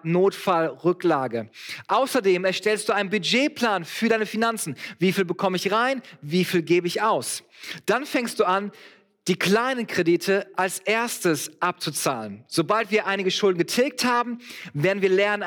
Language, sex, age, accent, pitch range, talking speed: German, male, 40-59, German, 155-200 Hz, 145 wpm